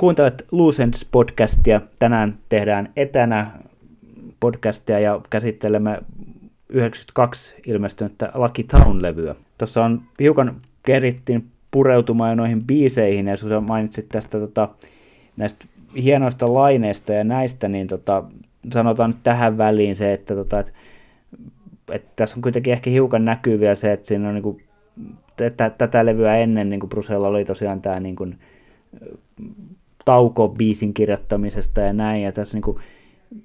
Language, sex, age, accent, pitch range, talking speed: Finnish, male, 30-49, native, 105-125 Hz, 125 wpm